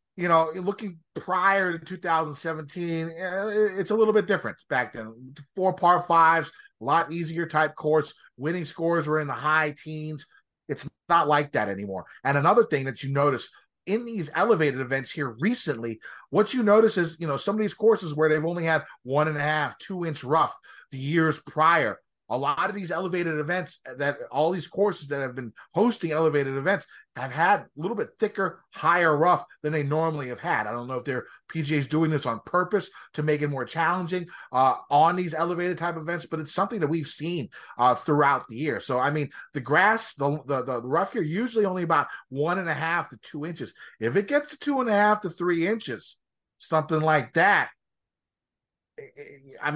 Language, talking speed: English, 200 wpm